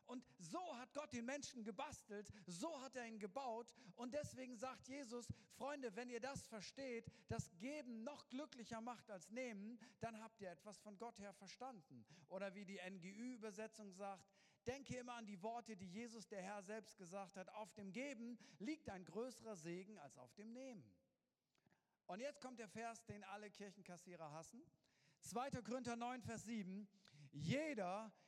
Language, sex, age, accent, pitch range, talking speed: German, male, 50-69, German, 190-245 Hz, 170 wpm